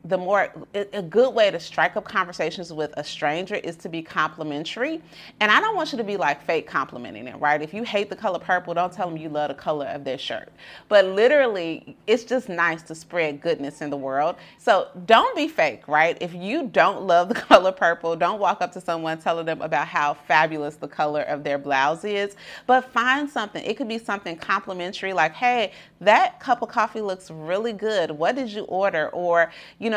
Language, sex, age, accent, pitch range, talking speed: English, female, 30-49, American, 160-220 Hz, 215 wpm